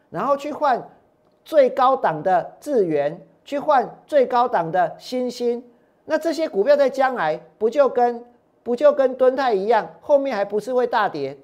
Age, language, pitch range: 50-69, Chinese, 185-265 Hz